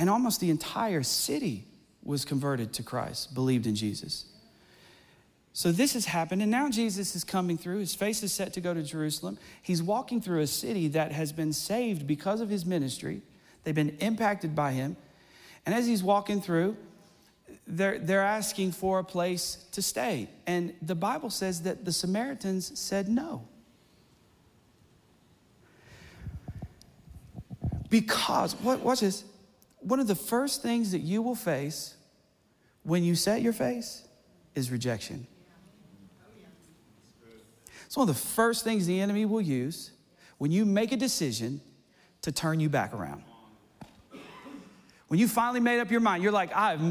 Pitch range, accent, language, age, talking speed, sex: 160-210 Hz, American, English, 40-59, 150 wpm, male